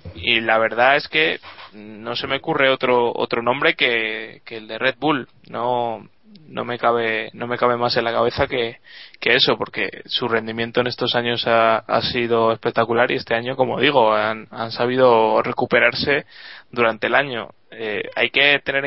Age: 20-39